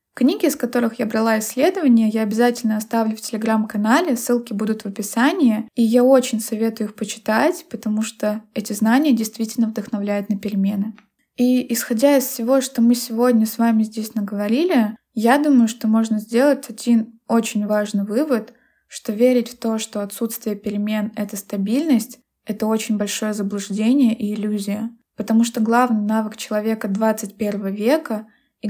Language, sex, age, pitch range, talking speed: Russian, female, 20-39, 215-245 Hz, 150 wpm